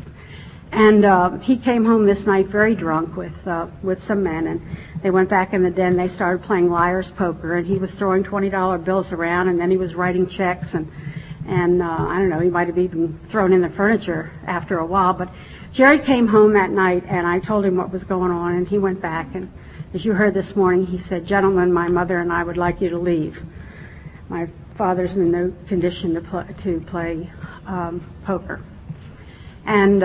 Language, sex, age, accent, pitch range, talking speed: English, female, 60-79, American, 175-210 Hz, 210 wpm